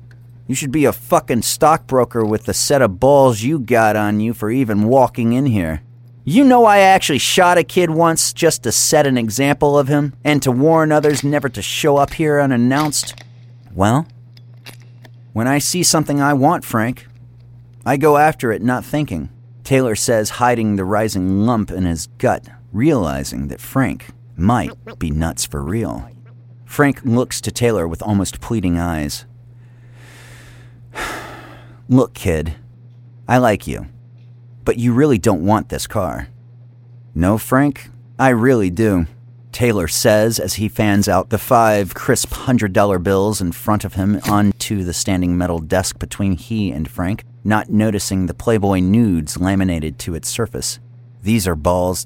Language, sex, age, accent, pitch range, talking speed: English, male, 40-59, American, 100-125 Hz, 160 wpm